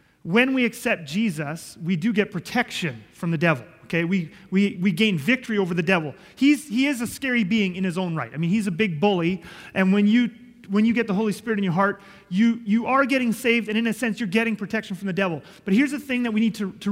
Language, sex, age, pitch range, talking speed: English, male, 30-49, 185-240 Hz, 255 wpm